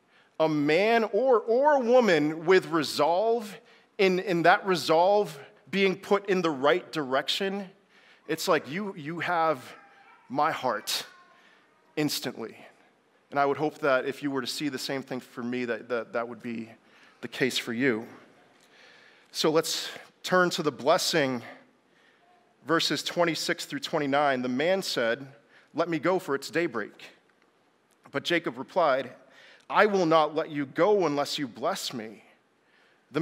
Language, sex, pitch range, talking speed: English, male, 140-185 Hz, 150 wpm